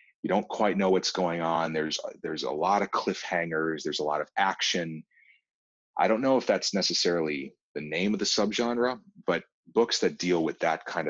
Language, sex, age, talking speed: English, male, 30-49, 195 wpm